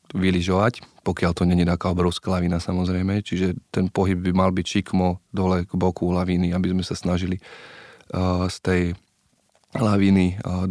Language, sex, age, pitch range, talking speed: Slovak, male, 20-39, 90-100 Hz, 150 wpm